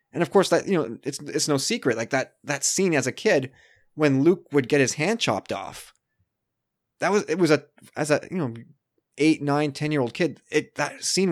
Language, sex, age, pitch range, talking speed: English, male, 20-39, 120-150 Hz, 230 wpm